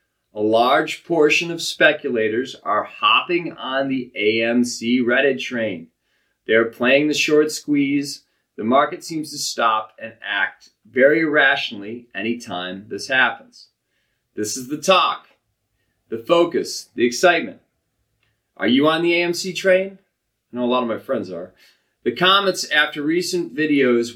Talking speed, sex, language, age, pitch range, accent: 140 wpm, male, English, 30-49, 125-175 Hz, American